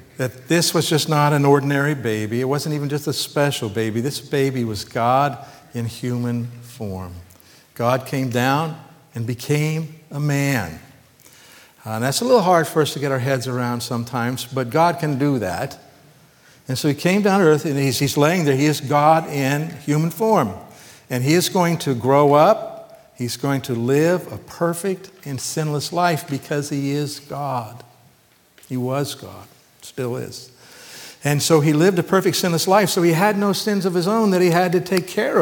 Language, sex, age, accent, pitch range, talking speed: English, male, 60-79, American, 130-165 Hz, 190 wpm